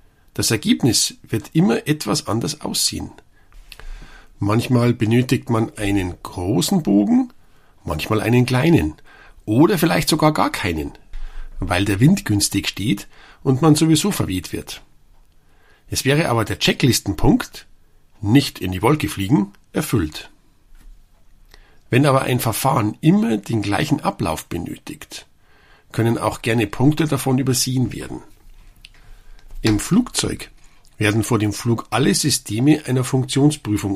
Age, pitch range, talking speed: 50-69, 100-135 Hz, 120 wpm